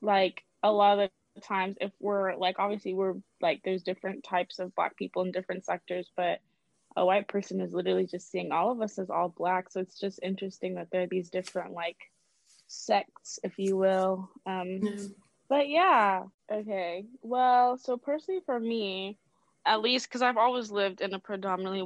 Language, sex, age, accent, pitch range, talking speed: English, female, 20-39, American, 180-205 Hz, 180 wpm